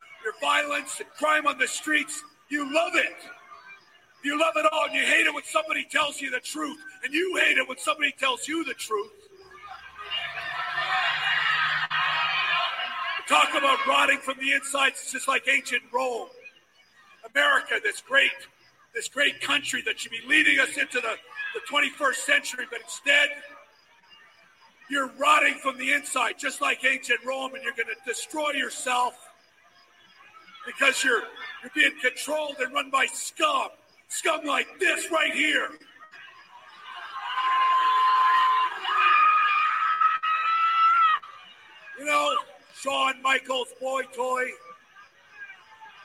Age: 40-59